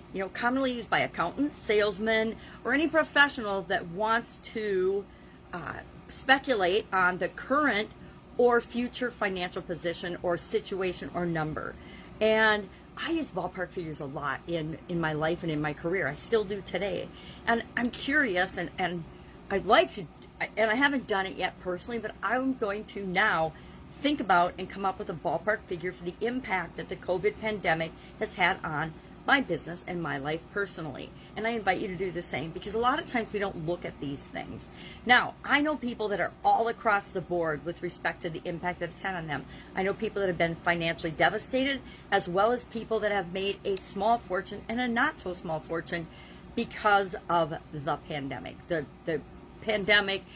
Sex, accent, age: female, American, 50-69